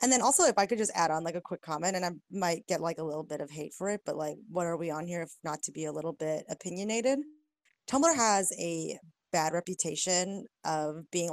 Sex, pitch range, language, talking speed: female, 160-190 Hz, English, 250 wpm